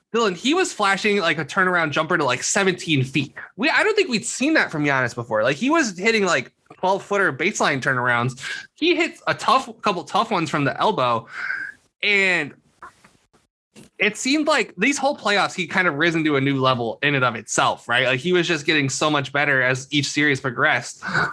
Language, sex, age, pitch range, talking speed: English, male, 20-39, 140-200 Hz, 205 wpm